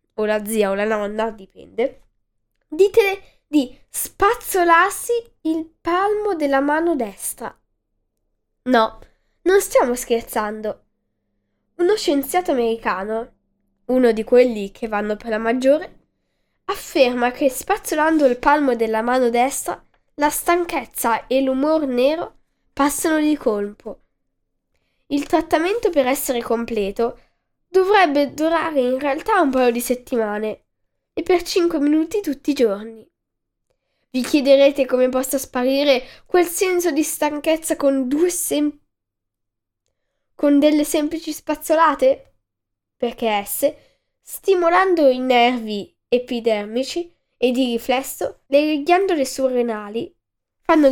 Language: Italian